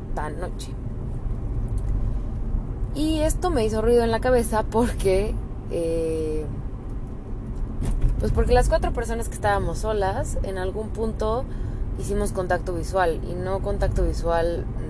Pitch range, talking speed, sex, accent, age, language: 105-180 Hz, 120 wpm, female, Mexican, 20-39, Spanish